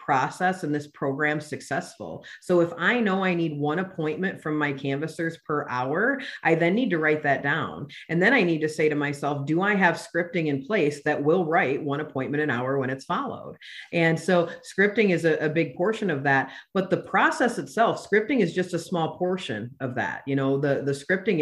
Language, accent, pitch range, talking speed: English, American, 145-190 Hz, 215 wpm